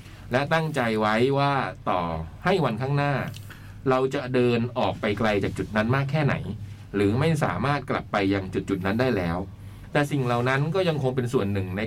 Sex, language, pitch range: male, Thai, 100-135 Hz